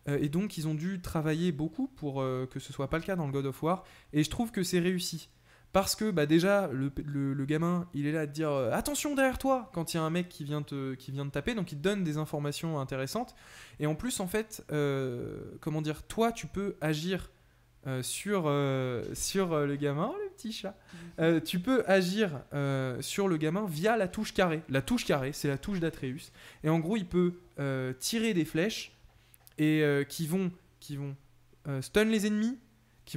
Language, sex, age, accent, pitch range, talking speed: French, male, 20-39, French, 140-195 Hz, 230 wpm